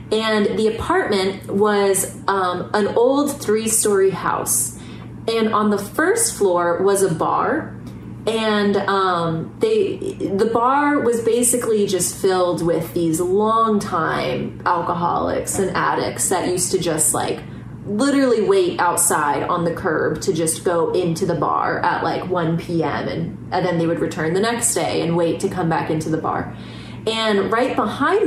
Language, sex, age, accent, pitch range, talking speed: English, female, 30-49, American, 185-250 Hz, 155 wpm